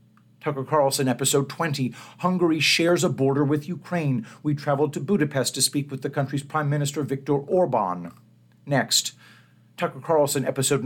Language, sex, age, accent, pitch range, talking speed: English, male, 50-69, American, 125-145 Hz, 150 wpm